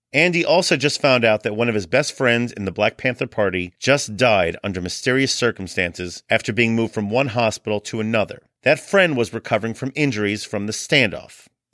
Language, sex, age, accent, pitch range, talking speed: English, male, 40-59, American, 110-145 Hz, 195 wpm